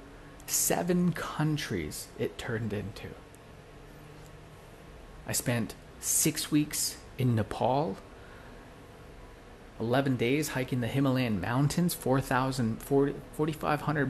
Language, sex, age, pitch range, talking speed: English, male, 30-49, 120-150 Hz, 75 wpm